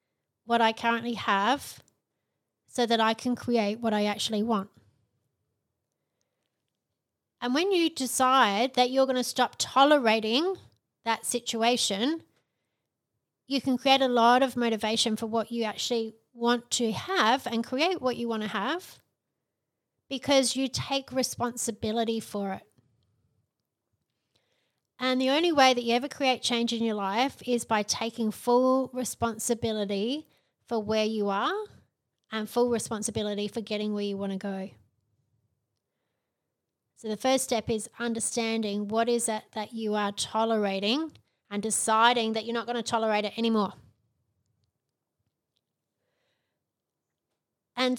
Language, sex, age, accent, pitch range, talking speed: English, female, 30-49, Australian, 210-250 Hz, 135 wpm